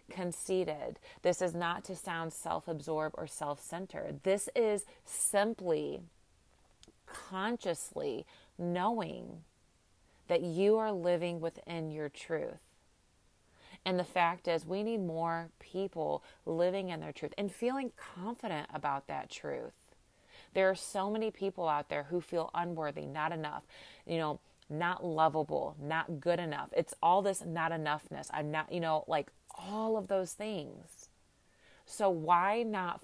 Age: 30-49